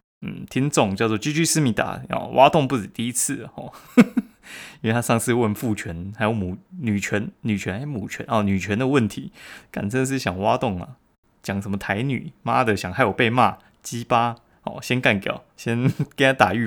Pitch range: 105-135 Hz